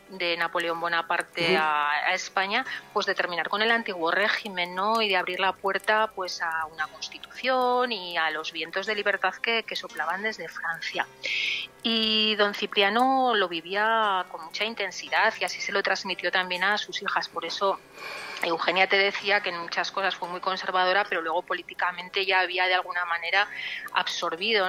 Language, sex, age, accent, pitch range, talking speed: Spanish, female, 30-49, Spanish, 175-220 Hz, 175 wpm